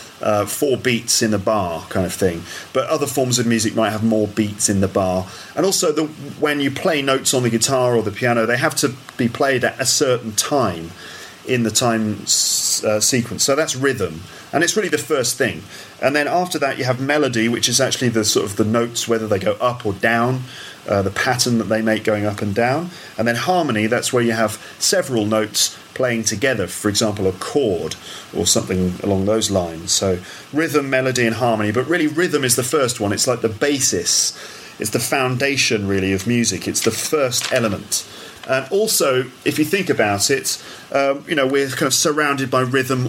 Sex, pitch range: male, 115-140 Hz